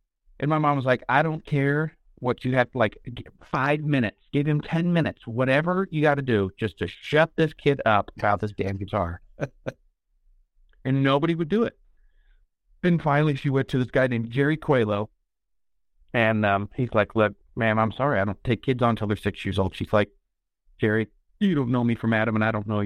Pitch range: 110-135 Hz